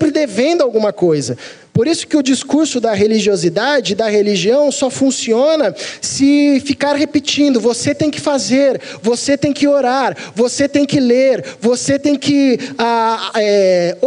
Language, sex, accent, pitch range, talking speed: Portuguese, male, Brazilian, 165-250 Hz, 140 wpm